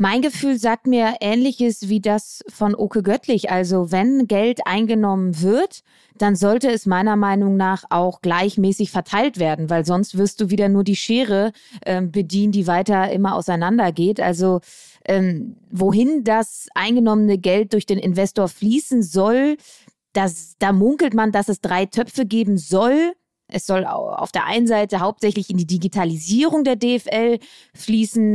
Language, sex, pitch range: German, female, 185-235 Hz